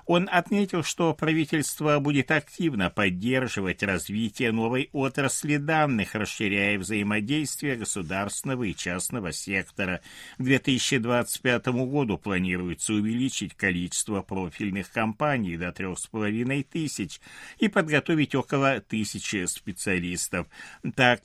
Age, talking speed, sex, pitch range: 60-79, 95 wpm, male, 100-135 Hz